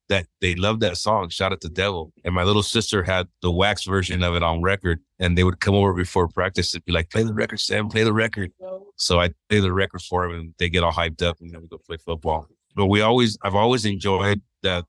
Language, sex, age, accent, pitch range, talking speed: English, male, 30-49, American, 90-105 Hz, 260 wpm